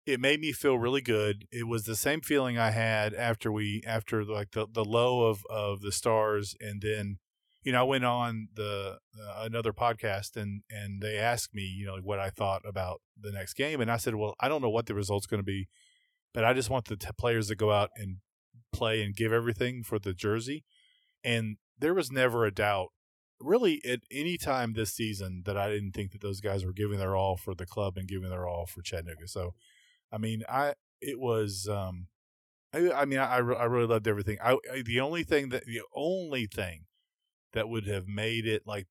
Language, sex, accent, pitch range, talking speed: English, male, American, 100-120 Hz, 220 wpm